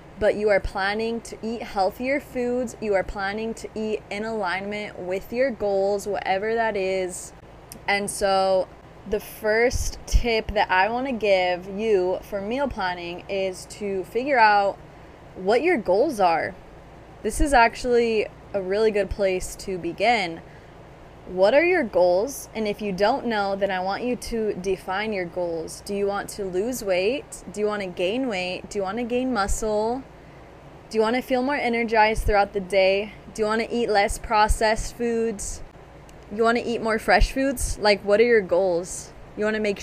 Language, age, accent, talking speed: English, 20-39, American, 180 wpm